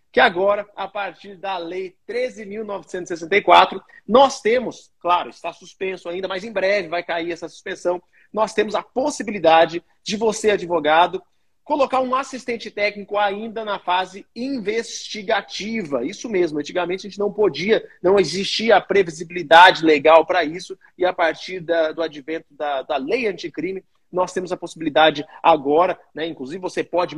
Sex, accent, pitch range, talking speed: male, Brazilian, 170-220 Hz, 150 wpm